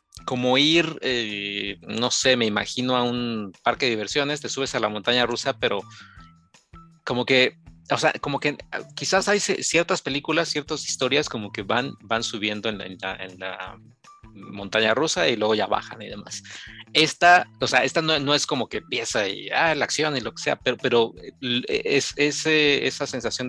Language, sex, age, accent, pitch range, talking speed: Spanish, male, 30-49, Mexican, 105-135 Hz, 190 wpm